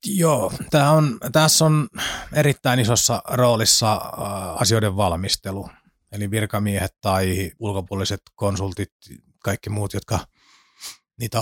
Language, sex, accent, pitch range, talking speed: Finnish, male, native, 95-110 Hz, 95 wpm